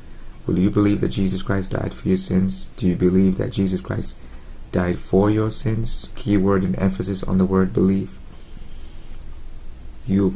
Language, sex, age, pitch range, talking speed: English, male, 30-49, 90-95 Hz, 170 wpm